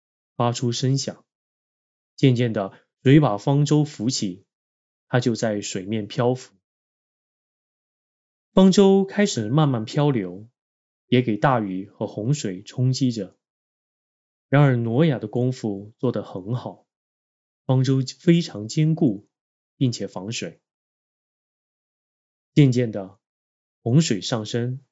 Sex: male